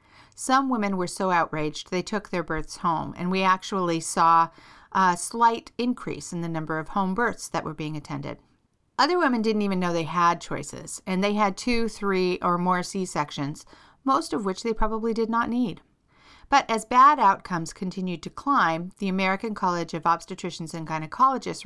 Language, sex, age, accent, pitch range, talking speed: English, female, 40-59, American, 170-230 Hz, 180 wpm